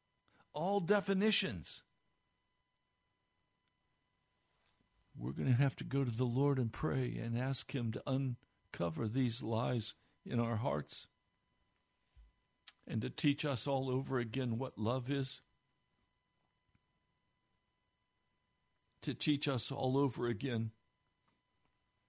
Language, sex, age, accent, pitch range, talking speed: English, male, 60-79, American, 110-145 Hz, 105 wpm